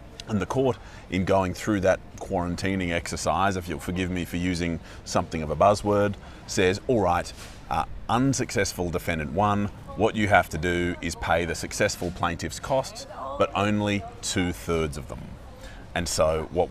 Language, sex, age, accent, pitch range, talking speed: English, male, 30-49, Australian, 85-105 Hz, 165 wpm